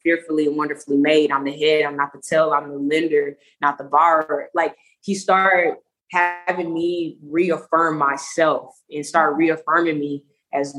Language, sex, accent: English, female, American